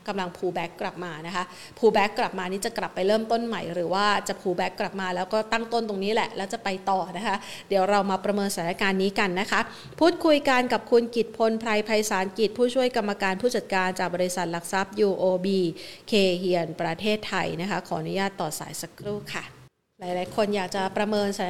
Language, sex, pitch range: Thai, female, 195-235 Hz